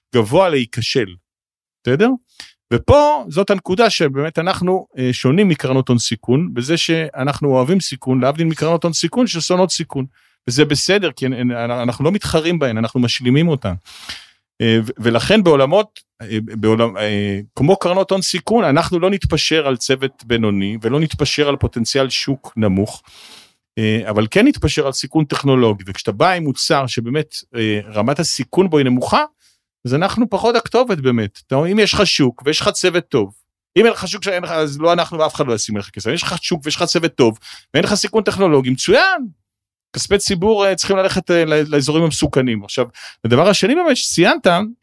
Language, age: Hebrew, 40-59